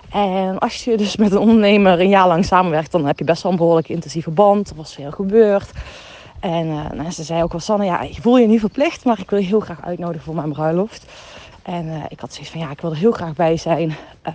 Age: 40-59